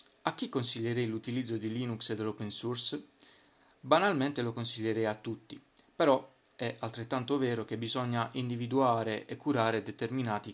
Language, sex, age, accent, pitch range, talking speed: Italian, male, 30-49, native, 115-135 Hz, 135 wpm